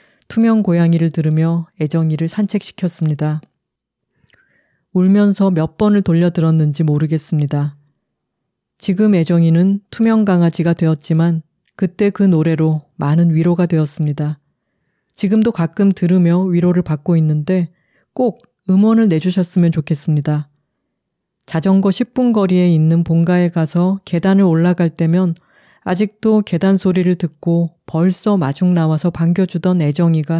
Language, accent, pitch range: Korean, native, 165-195 Hz